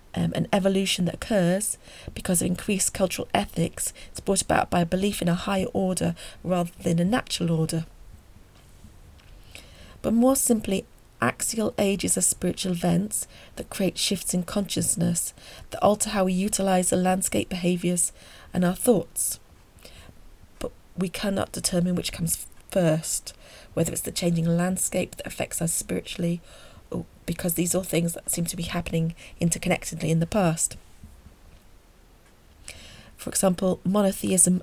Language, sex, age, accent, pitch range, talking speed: English, female, 40-59, British, 165-185 Hz, 140 wpm